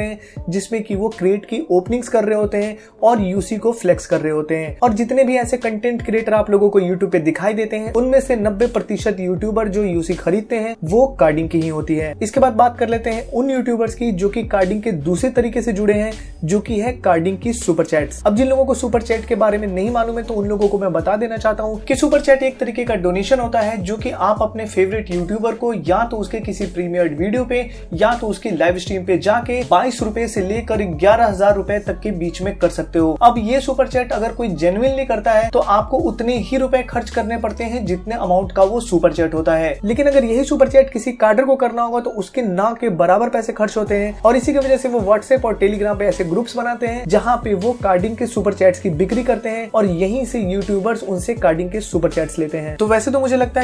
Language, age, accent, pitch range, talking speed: Hindi, 20-39, native, 195-240 Hz, 170 wpm